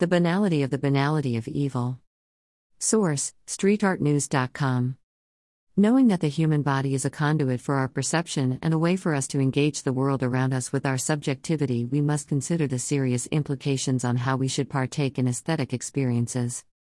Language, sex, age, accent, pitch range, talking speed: English, female, 50-69, American, 125-150 Hz, 170 wpm